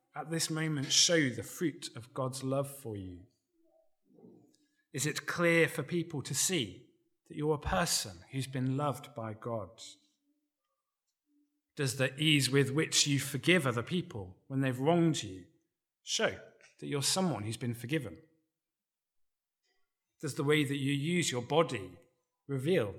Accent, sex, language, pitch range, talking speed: British, male, English, 125-170 Hz, 145 wpm